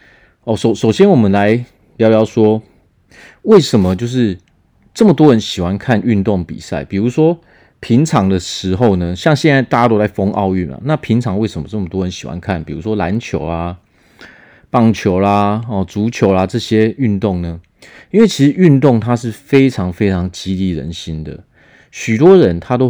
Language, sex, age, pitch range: Chinese, male, 30-49, 95-125 Hz